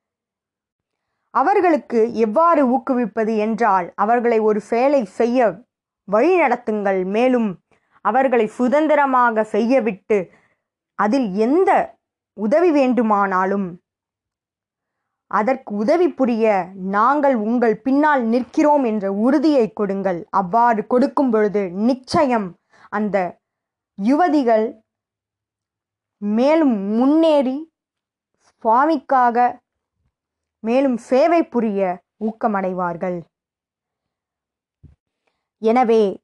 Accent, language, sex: native, Tamil, female